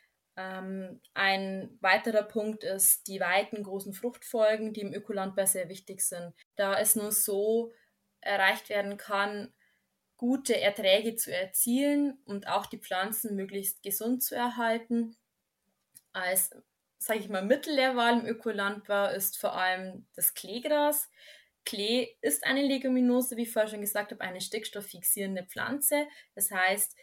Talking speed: 130 wpm